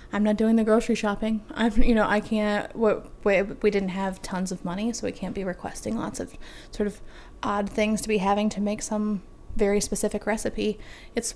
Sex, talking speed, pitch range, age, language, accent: female, 205 wpm, 195-220 Hz, 20-39, English, American